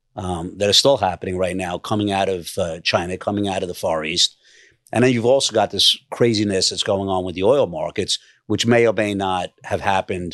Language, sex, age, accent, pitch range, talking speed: English, male, 50-69, American, 95-115 Hz, 225 wpm